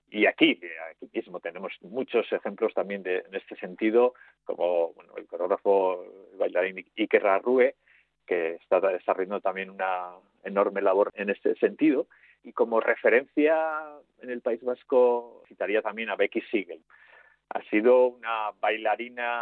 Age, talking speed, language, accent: 40-59, 135 wpm, Spanish, Spanish